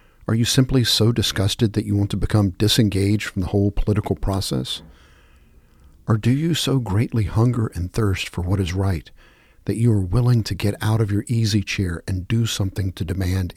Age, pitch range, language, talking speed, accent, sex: 50-69, 90-110 Hz, English, 195 wpm, American, male